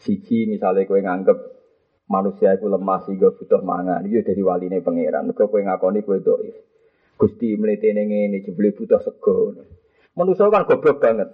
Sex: male